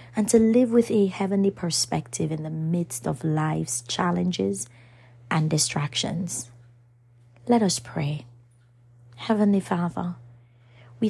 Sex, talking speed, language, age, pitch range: female, 115 wpm, English, 30-49, 120-185 Hz